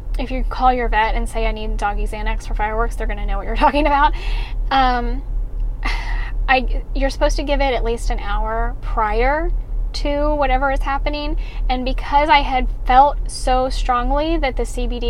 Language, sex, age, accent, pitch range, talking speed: English, female, 10-29, American, 230-270 Hz, 185 wpm